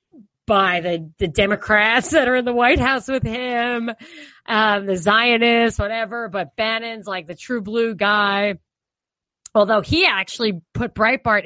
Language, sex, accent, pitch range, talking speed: English, female, American, 185-235 Hz, 145 wpm